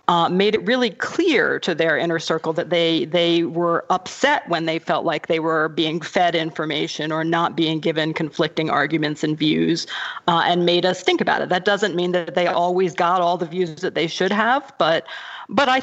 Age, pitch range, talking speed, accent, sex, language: 40-59, 160-190 Hz, 210 wpm, American, female, English